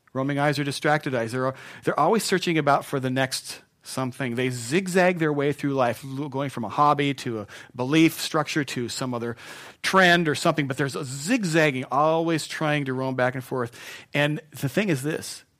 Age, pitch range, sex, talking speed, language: 40-59, 115-150 Hz, male, 190 wpm, English